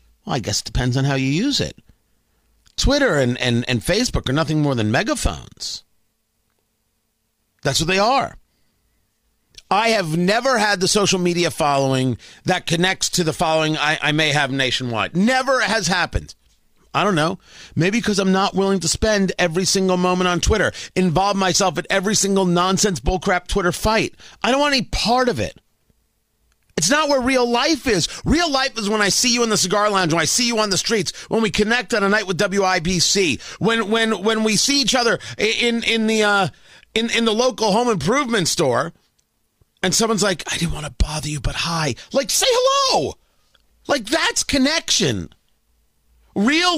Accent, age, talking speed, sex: American, 40-59, 185 wpm, male